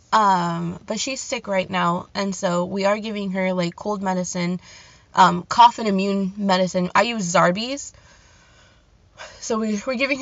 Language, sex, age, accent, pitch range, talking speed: English, female, 20-39, American, 185-240 Hz, 160 wpm